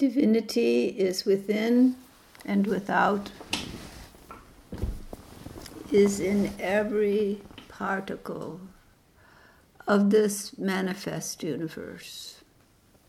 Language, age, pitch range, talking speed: English, 60-79, 200-235 Hz, 60 wpm